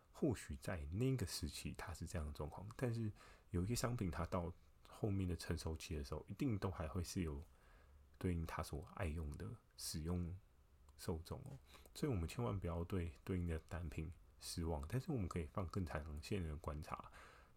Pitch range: 80-100 Hz